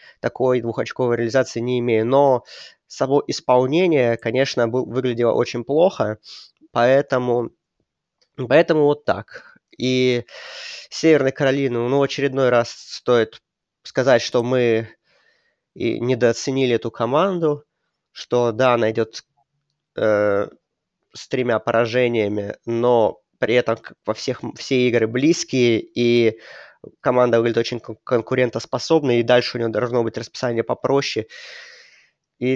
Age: 20-39